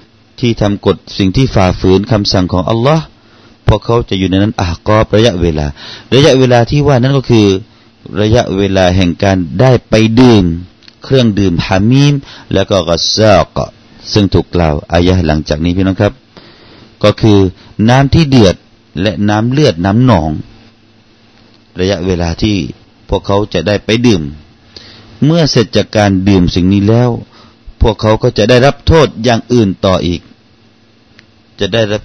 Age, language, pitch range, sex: 30-49, Thai, 95-115 Hz, male